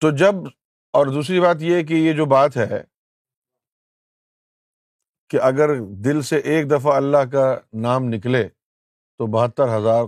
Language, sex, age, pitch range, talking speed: Urdu, male, 50-69, 120-155 Hz, 145 wpm